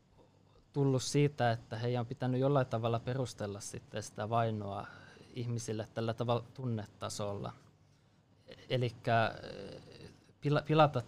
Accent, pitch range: native, 110-130 Hz